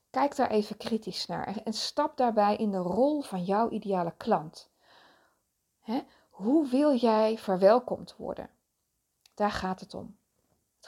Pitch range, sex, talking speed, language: 190-250 Hz, female, 140 wpm, Dutch